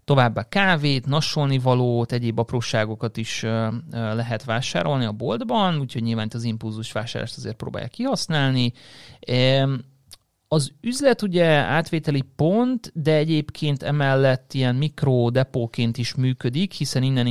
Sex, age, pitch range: male, 30-49, 115-145 Hz